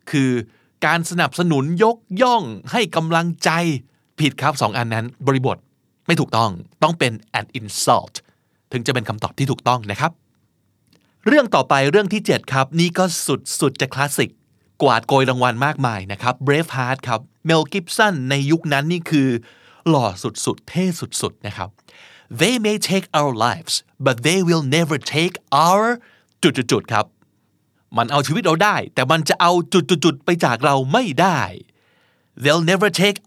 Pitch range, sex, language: 120-165 Hz, male, Thai